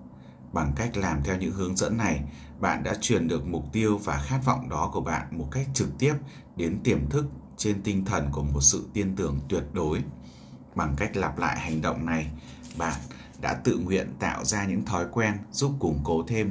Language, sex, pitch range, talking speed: Vietnamese, male, 75-105 Hz, 205 wpm